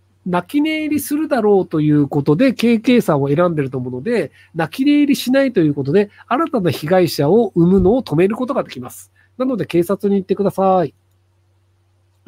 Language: Japanese